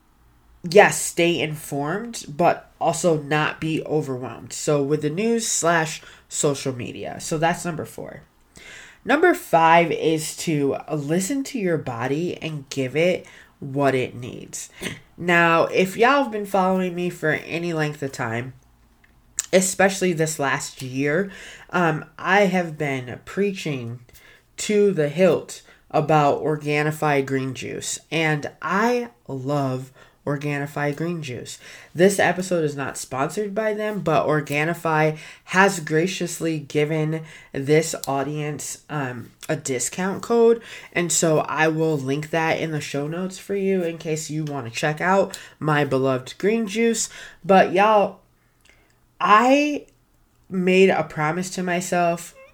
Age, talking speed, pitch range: 20-39, 130 wpm, 145-185 Hz